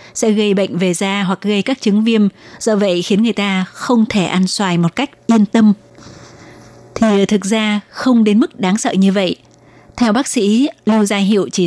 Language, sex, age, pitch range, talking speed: Vietnamese, female, 20-39, 185-220 Hz, 205 wpm